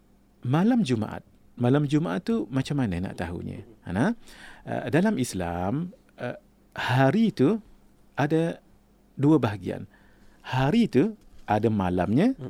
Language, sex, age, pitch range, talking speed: English, male, 50-69, 110-155 Hz, 95 wpm